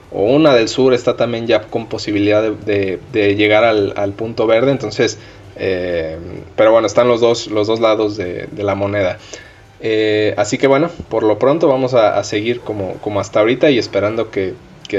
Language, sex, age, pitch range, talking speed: Spanish, male, 20-39, 100-125 Hz, 200 wpm